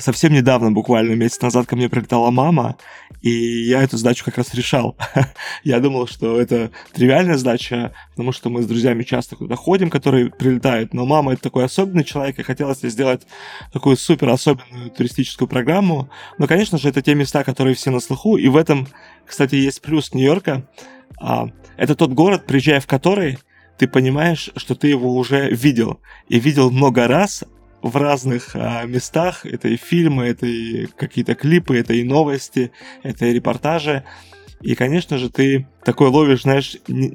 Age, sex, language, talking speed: 20-39, male, Russian, 170 wpm